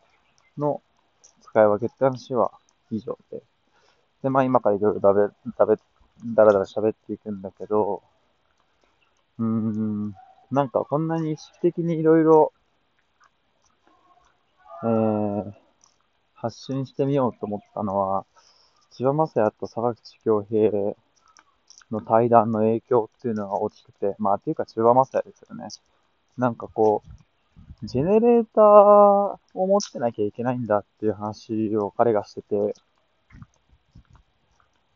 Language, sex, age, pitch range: Japanese, male, 20-39, 105-165 Hz